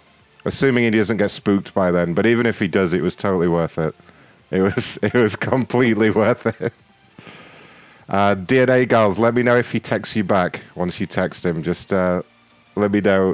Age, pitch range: 30-49, 90-110 Hz